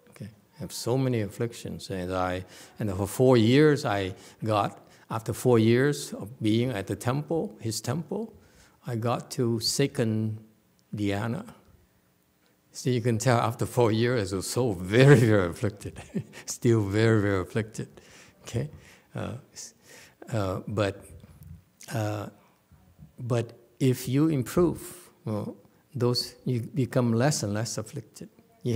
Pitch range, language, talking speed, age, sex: 105-130 Hz, English, 130 wpm, 60-79, male